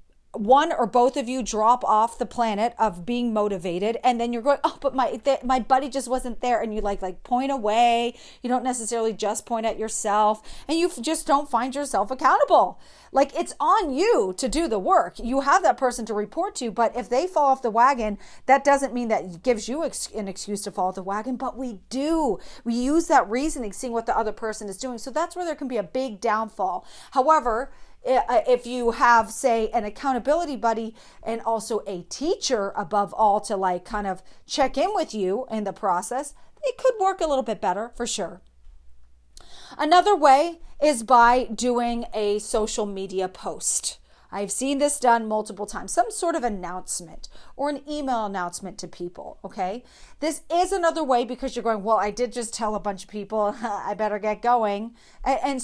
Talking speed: 200 wpm